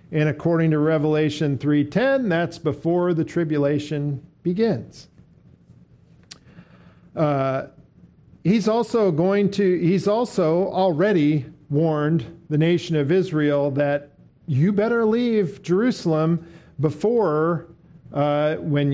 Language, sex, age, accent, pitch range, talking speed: English, male, 50-69, American, 145-185 Hz, 100 wpm